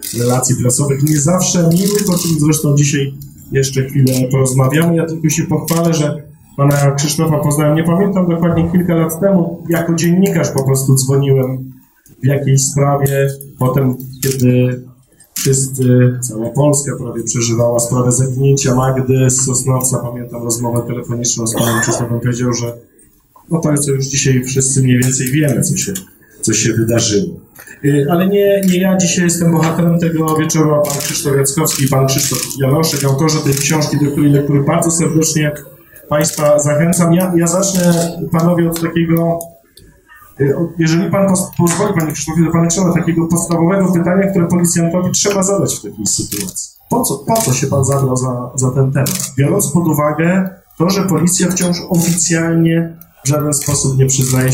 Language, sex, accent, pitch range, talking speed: Polish, male, native, 130-170 Hz, 155 wpm